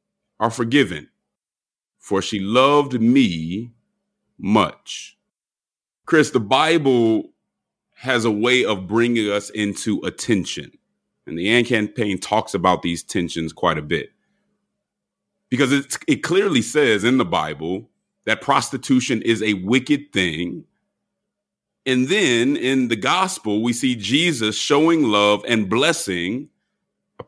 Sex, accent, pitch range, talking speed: male, American, 105-160 Hz, 125 wpm